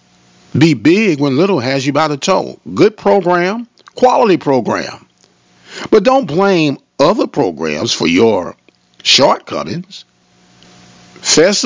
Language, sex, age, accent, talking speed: English, male, 50-69, American, 115 wpm